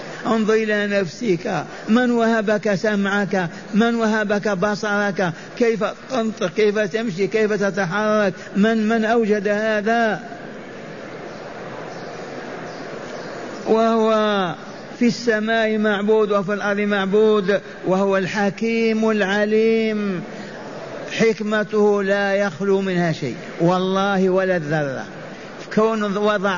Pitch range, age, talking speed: 190-215 Hz, 50-69, 85 wpm